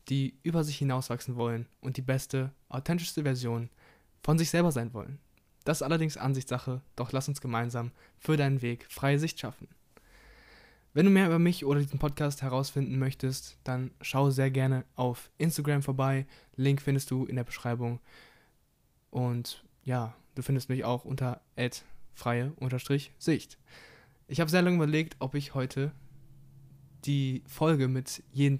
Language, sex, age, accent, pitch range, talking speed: German, male, 20-39, German, 125-145 Hz, 155 wpm